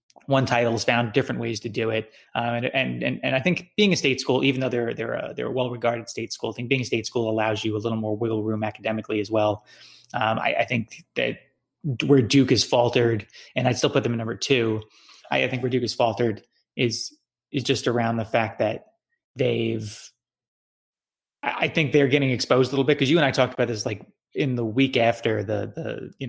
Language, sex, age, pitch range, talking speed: English, male, 20-39, 115-135 Hz, 225 wpm